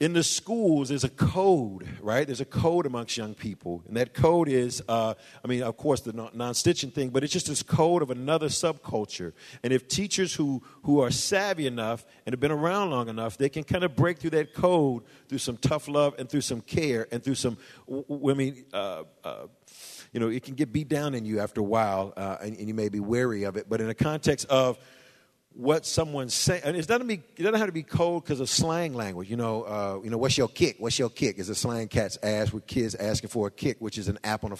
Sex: male